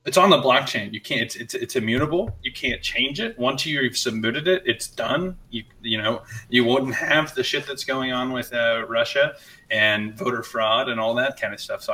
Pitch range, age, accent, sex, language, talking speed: 115-150 Hz, 20-39, American, male, English, 220 wpm